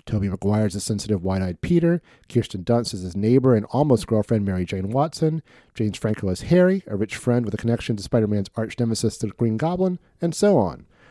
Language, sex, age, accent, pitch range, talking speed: English, male, 40-59, American, 110-160 Hz, 195 wpm